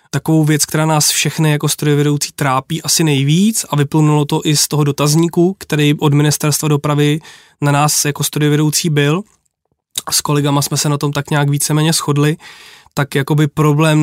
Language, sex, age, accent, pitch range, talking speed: Czech, male, 20-39, native, 145-165 Hz, 165 wpm